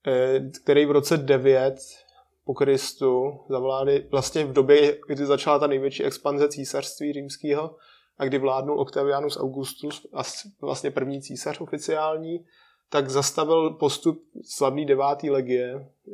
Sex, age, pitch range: male, 20-39, 135-150 Hz